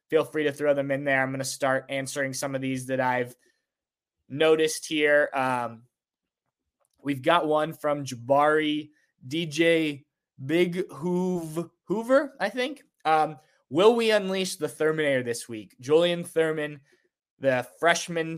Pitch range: 130-160 Hz